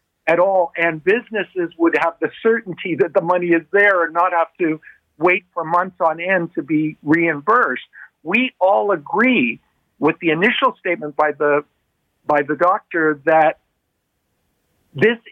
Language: English